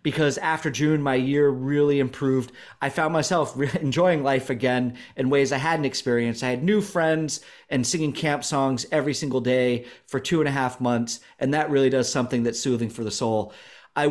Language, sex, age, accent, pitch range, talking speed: English, male, 30-49, American, 125-155 Hz, 200 wpm